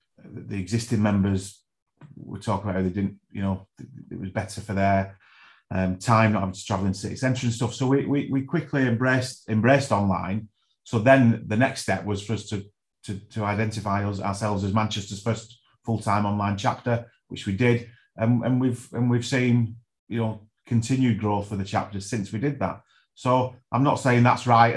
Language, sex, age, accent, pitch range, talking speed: English, male, 30-49, British, 100-120 Hz, 200 wpm